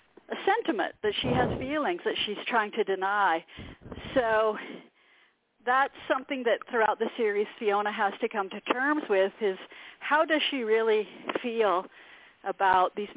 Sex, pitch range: female, 205-265 Hz